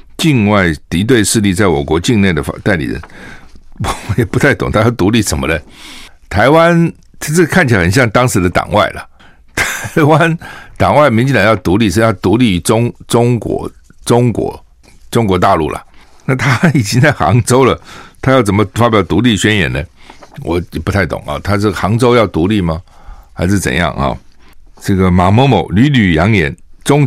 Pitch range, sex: 90-115 Hz, male